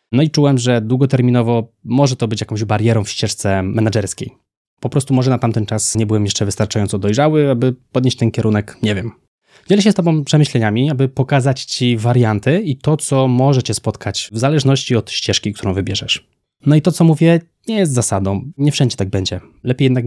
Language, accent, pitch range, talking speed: Polish, native, 110-145 Hz, 195 wpm